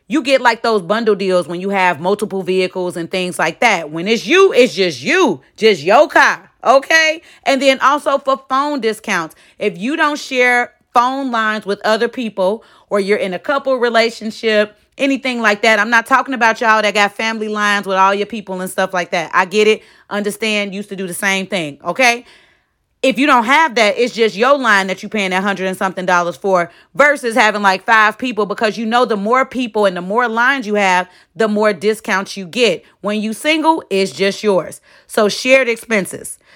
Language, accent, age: English, American, 30-49